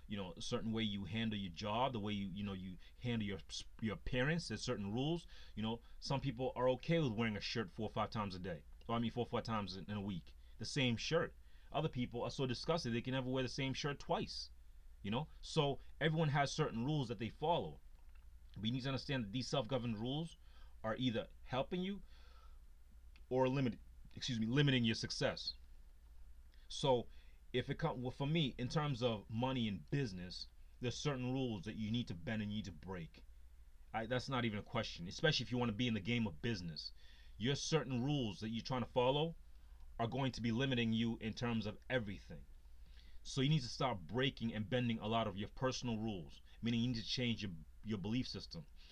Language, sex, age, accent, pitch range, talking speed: English, male, 30-49, American, 80-130 Hz, 215 wpm